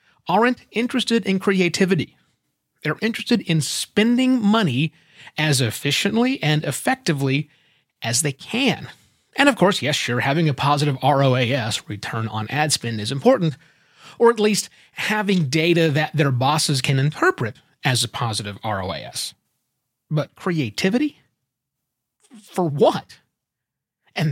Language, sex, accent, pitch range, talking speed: English, male, American, 130-195 Hz, 125 wpm